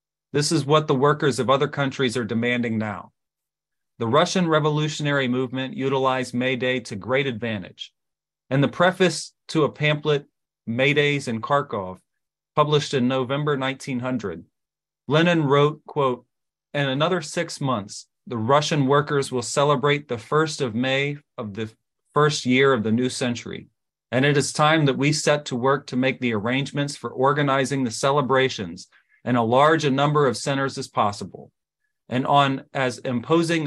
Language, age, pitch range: English, 30-49, 130-150 Hz